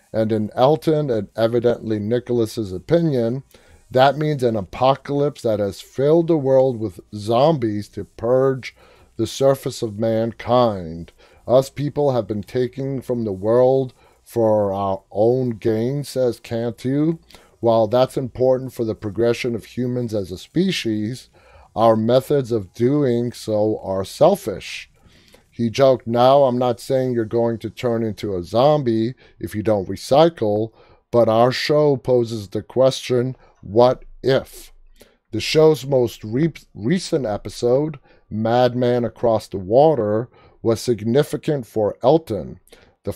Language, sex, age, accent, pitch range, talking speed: English, male, 30-49, American, 110-130 Hz, 130 wpm